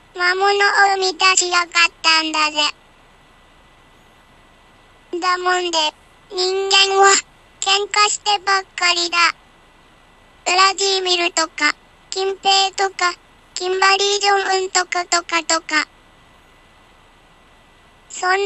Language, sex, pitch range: Japanese, male, 345-390 Hz